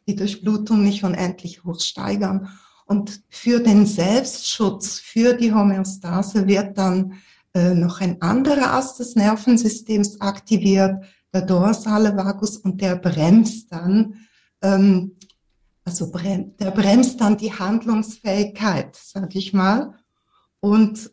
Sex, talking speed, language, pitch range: female, 115 wpm, German, 185-215 Hz